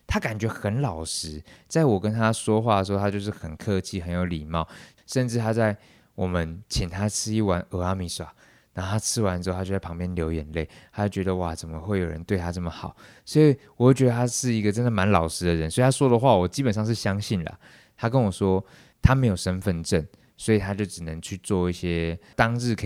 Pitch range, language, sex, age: 90-110 Hz, Chinese, male, 20-39